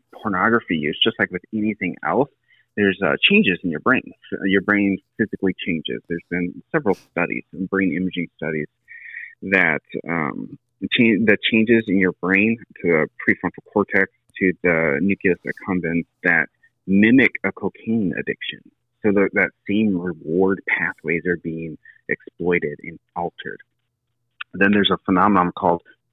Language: English